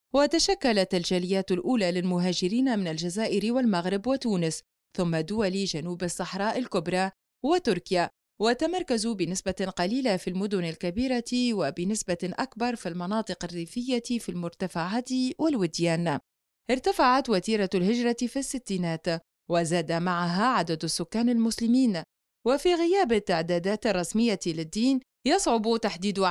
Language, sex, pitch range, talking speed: Arabic, female, 175-240 Hz, 105 wpm